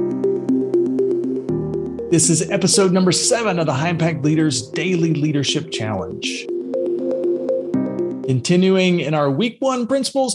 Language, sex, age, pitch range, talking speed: English, male, 40-59, 115-180 Hz, 110 wpm